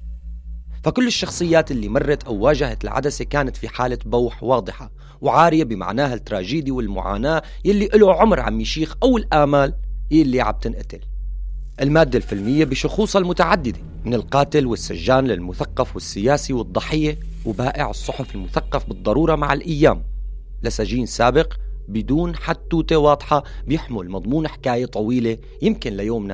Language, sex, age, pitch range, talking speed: Arabic, male, 30-49, 110-155 Hz, 120 wpm